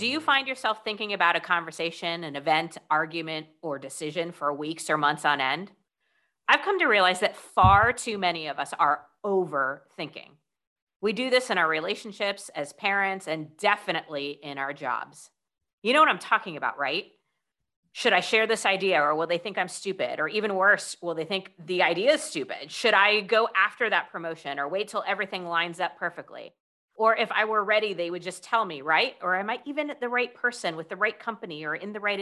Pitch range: 165-225 Hz